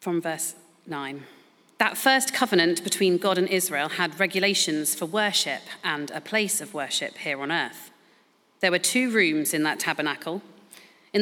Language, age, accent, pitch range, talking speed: English, 40-59, British, 165-210 Hz, 160 wpm